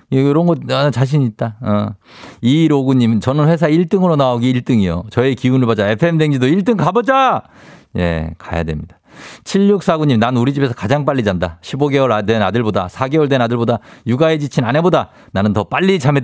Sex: male